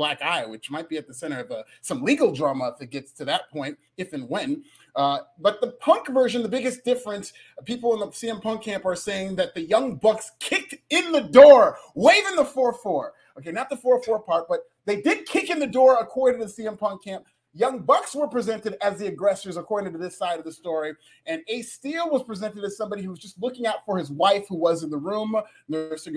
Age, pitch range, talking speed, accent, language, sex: 30-49, 160-230 Hz, 235 wpm, American, English, male